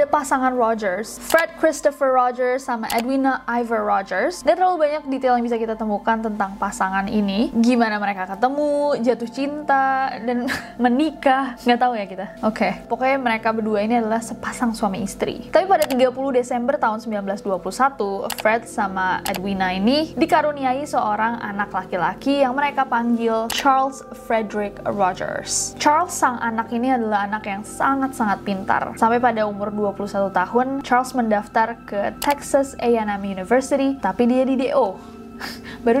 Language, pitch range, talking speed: Indonesian, 220-275 Hz, 150 wpm